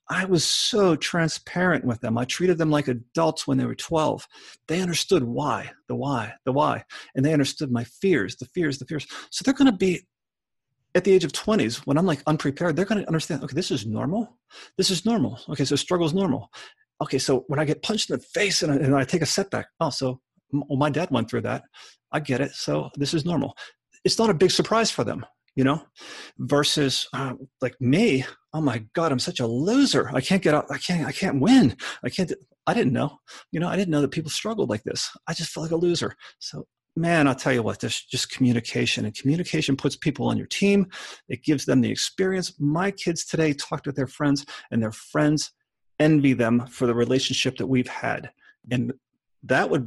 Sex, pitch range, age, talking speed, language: male, 130-175 Hz, 30-49, 220 wpm, English